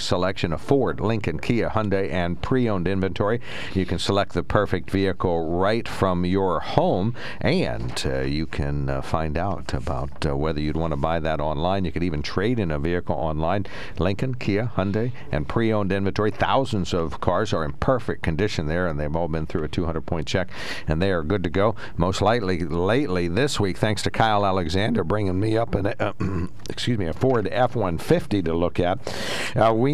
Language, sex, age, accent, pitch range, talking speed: English, male, 60-79, American, 85-105 Hz, 190 wpm